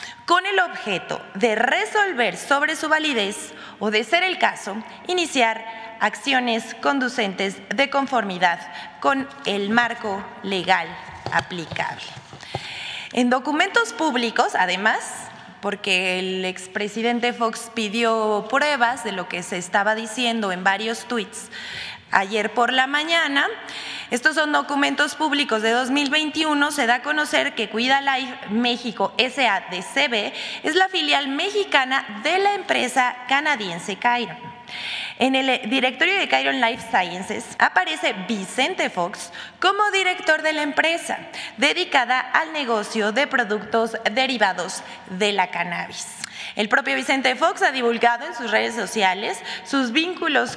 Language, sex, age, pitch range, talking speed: Spanish, female, 20-39, 215-290 Hz, 130 wpm